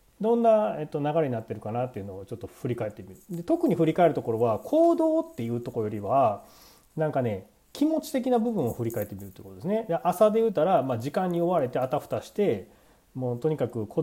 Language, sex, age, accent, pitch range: Japanese, male, 40-59, native, 105-160 Hz